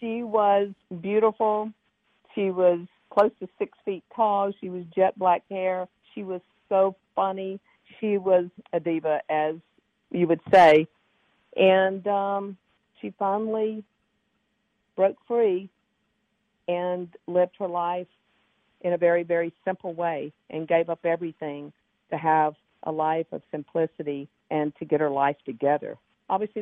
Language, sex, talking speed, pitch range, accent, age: English, female, 135 wpm, 165-195 Hz, American, 50-69